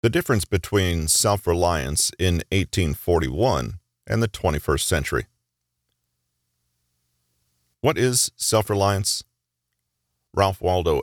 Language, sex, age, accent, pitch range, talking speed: English, male, 40-59, American, 75-105 Hz, 80 wpm